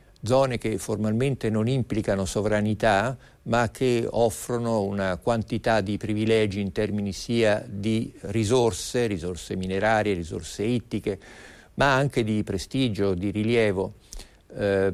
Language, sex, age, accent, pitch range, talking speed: Italian, male, 50-69, native, 100-115 Hz, 115 wpm